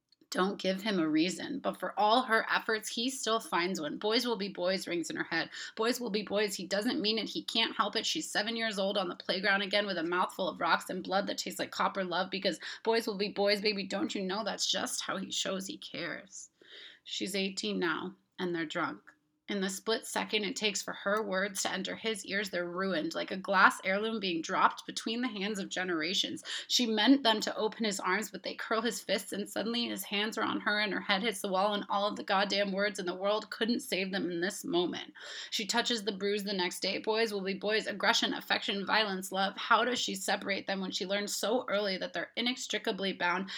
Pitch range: 190-225 Hz